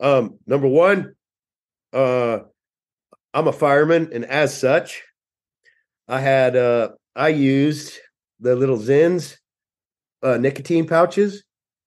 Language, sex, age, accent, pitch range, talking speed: English, male, 40-59, American, 110-135 Hz, 105 wpm